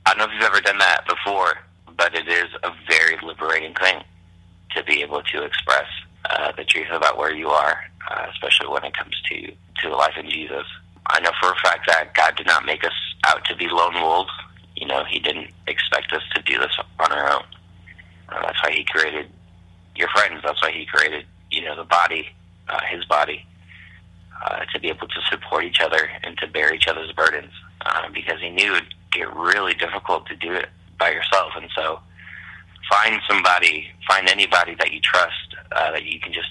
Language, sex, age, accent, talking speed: English, male, 30-49, American, 205 wpm